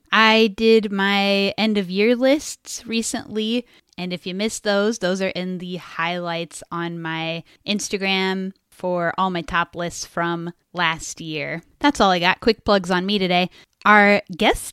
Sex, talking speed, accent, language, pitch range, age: female, 155 wpm, American, English, 170-210 Hz, 10-29